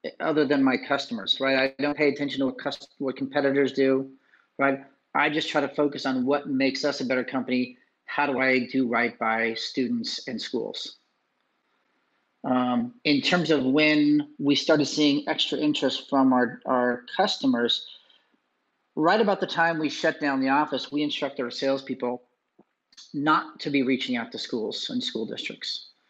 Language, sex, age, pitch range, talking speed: English, male, 40-59, 130-160 Hz, 170 wpm